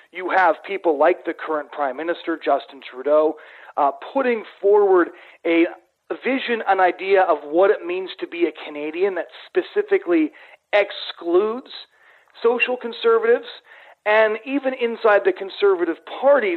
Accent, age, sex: American, 40-59, male